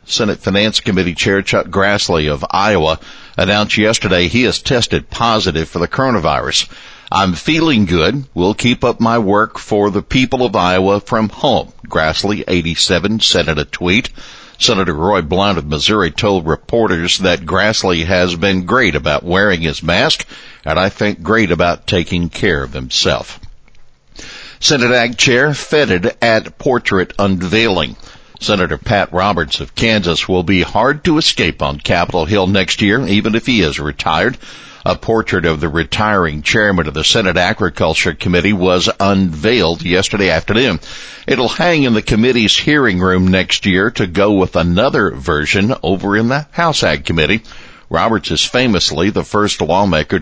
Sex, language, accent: male, English, American